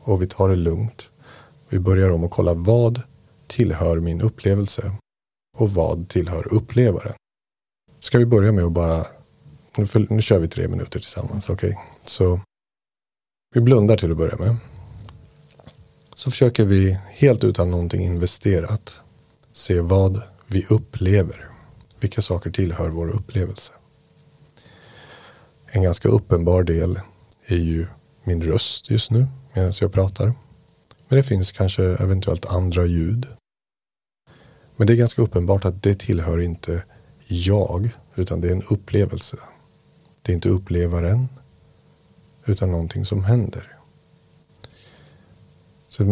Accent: Swedish